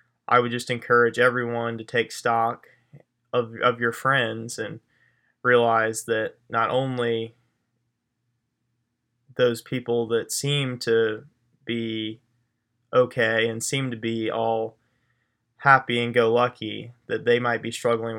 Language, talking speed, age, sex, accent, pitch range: English, 125 wpm, 20-39, male, American, 115-120 Hz